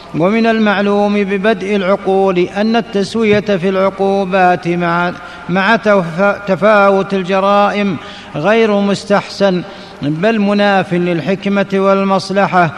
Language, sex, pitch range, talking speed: Arabic, male, 190-205 Hz, 80 wpm